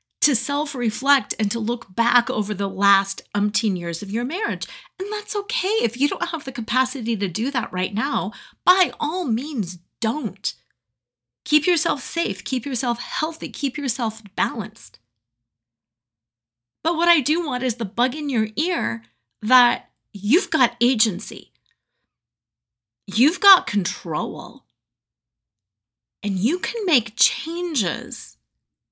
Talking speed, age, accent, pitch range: 135 wpm, 30-49, American, 185-275 Hz